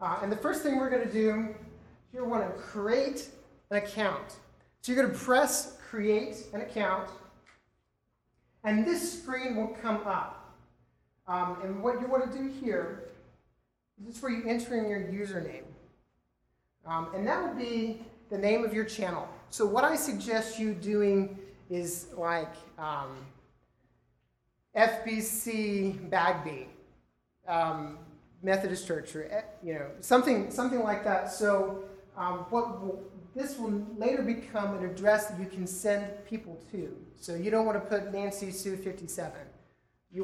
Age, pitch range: 30-49, 165-220 Hz